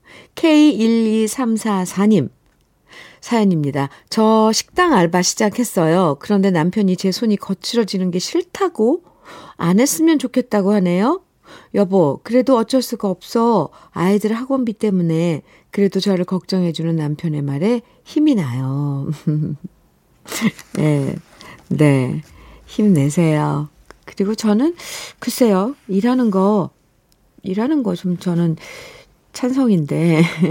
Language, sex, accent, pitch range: Korean, female, native, 165-220 Hz